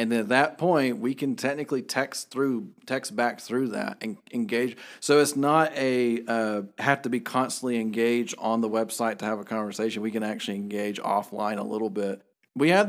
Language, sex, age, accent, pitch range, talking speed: English, male, 40-59, American, 110-130 Hz, 200 wpm